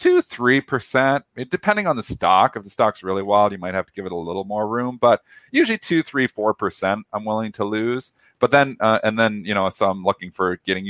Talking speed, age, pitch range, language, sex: 240 wpm, 40-59, 100-125 Hz, English, male